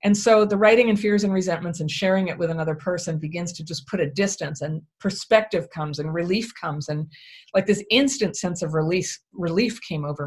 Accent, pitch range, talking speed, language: American, 155-205 Hz, 205 wpm, English